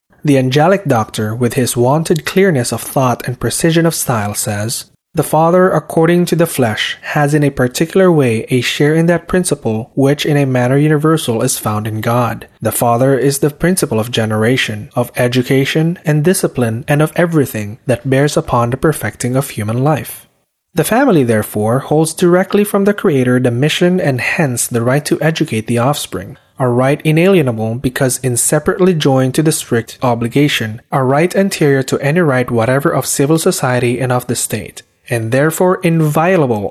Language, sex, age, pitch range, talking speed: English, male, 20-39, 120-160 Hz, 175 wpm